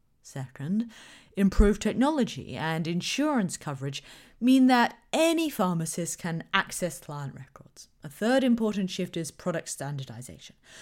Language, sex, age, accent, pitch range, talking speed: English, female, 30-49, British, 140-220 Hz, 115 wpm